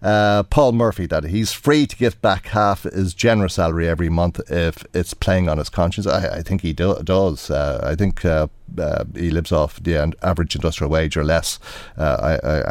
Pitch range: 85-110 Hz